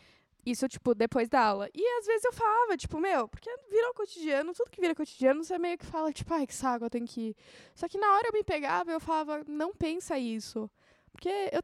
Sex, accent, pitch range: female, Brazilian, 230-310 Hz